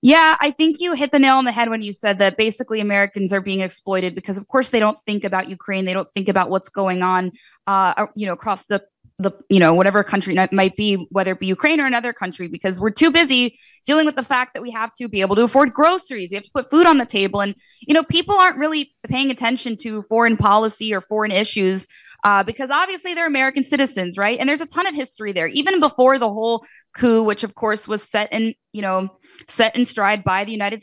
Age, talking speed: 20-39, 245 wpm